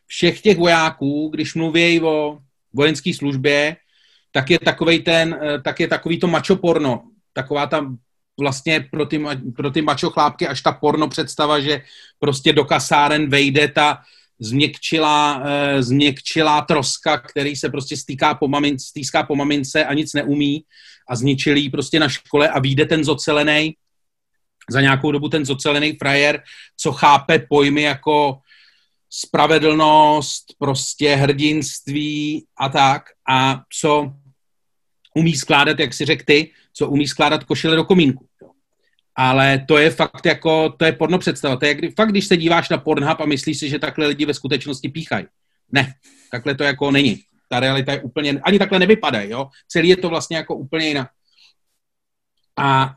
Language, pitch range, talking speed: Czech, 140-160 Hz, 150 wpm